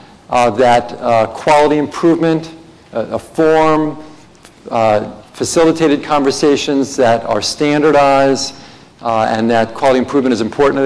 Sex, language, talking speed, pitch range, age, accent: male, English, 120 wpm, 120-150 Hz, 50-69, American